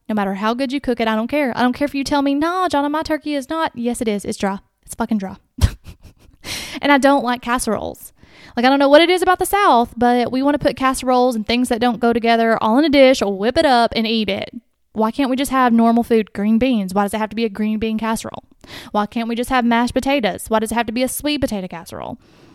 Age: 10-29